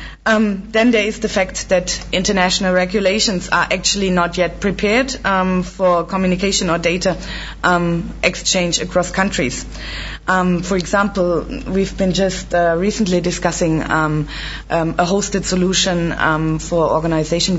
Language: English